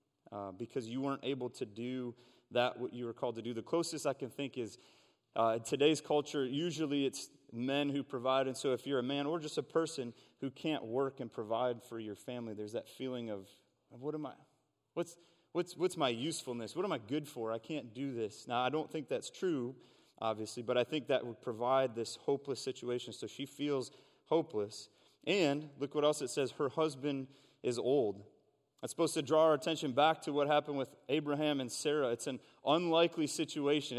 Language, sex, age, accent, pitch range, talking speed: English, male, 30-49, American, 120-155 Hz, 205 wpm